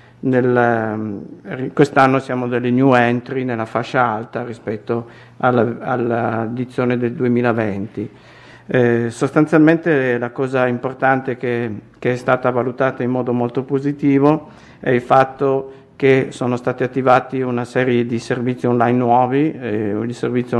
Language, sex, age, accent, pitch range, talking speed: Italian, male, 50-69, native, 120-130 Hz, 120 wpm